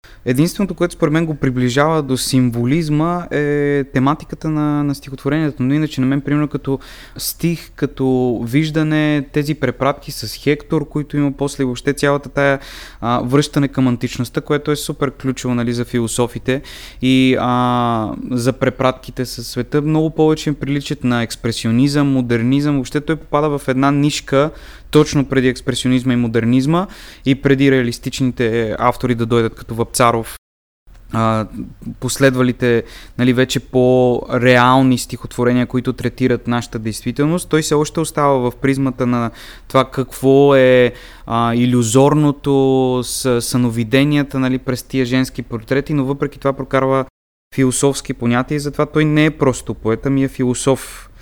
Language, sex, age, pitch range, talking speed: Bulgarian, male, 20-39, 125-145 Hz, 140 wpm